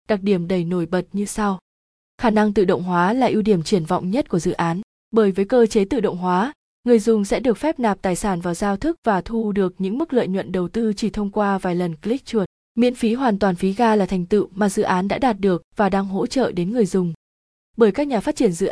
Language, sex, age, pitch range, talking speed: Vietnamese, female, 20-39, 190-230 Hz, 265 wpm